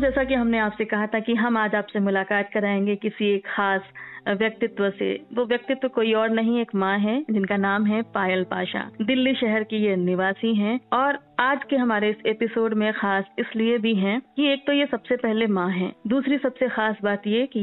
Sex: female